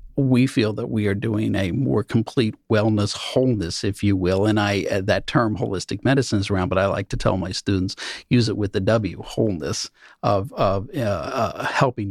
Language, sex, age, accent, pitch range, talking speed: English, male, 50-69, American, 100-130 Hz, 200 wpm